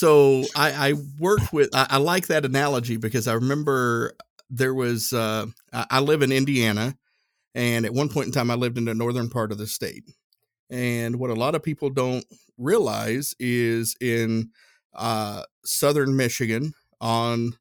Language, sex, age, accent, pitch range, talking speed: English, male, 50-69, American, 115-135 Hz, 165 wpm